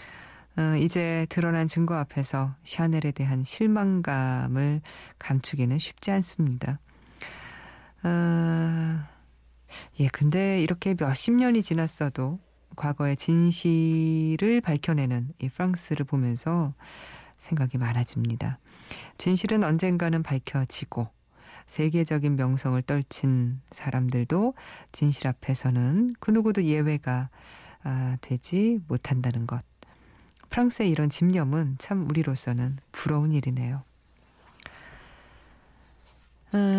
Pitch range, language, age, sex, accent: 130-170 Hz, Korean, 20-39, female, native